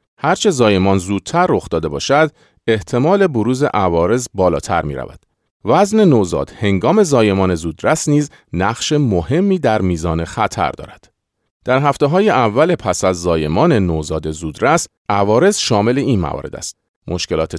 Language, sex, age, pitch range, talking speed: Persian, male, 40-59, 80-135 Hz, 130 wpm